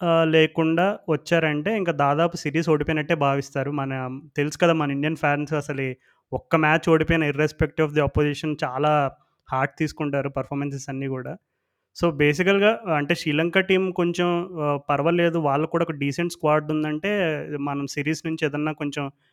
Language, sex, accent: Telugu, male, native